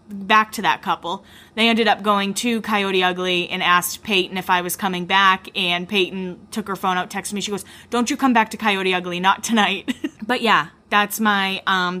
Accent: American